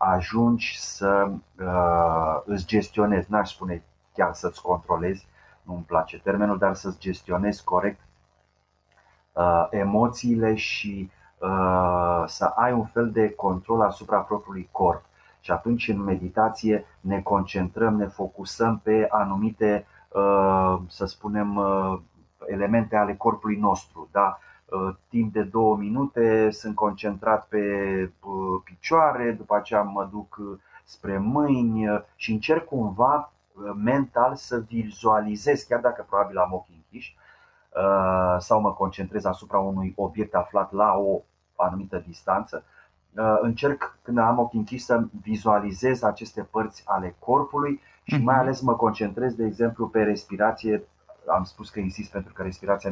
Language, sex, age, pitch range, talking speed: Romanian, male, 30-49, 95-110 Hz, 130 wpm